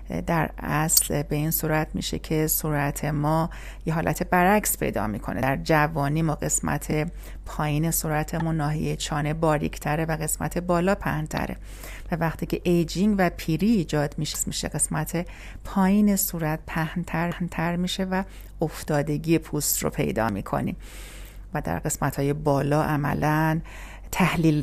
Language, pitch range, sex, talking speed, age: Persian, 150-185 Hz, female, 130 wpm, 40-59